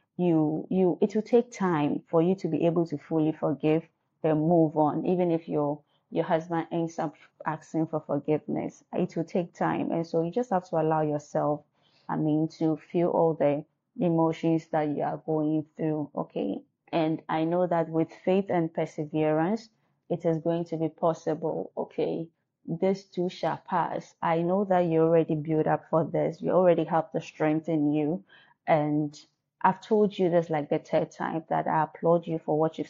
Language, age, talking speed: English, 20-39, 190 wpm